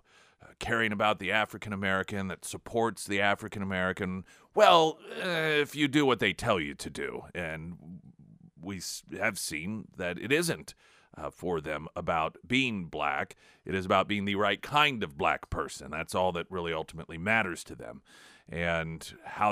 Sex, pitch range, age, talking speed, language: male, 90-110 Hz, 40-59, 170 wpm, English